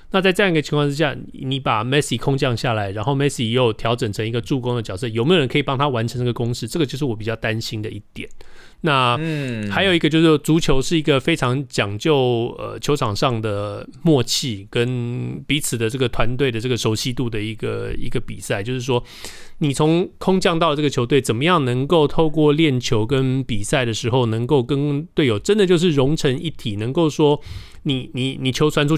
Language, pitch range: Chinese, 115-150 Hz